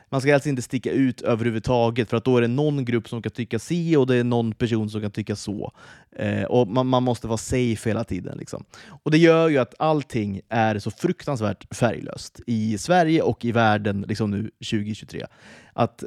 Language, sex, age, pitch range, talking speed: Swedish, male, 20-39, 110-150 Hz, 210 wpm